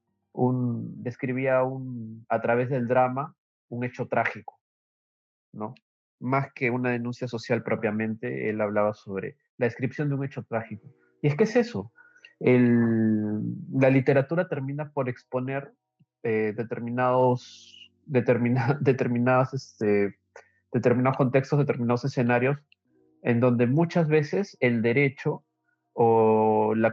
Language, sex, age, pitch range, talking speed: Spanish, male, 30-49, 115-140 Hz, 120 wpm